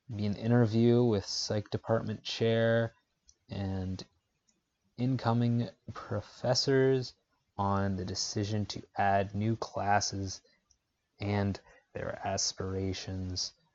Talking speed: 85 wpm